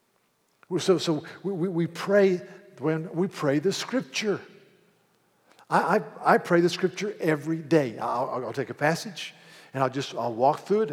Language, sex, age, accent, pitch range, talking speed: English, male, 50-69, American, 150-190 Hz, 160 wpm